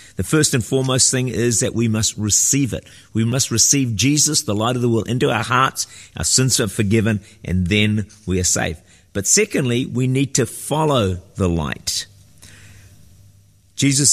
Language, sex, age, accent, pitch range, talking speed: English, male, 50-69, Australian, 100-125 Hz, 175 wpm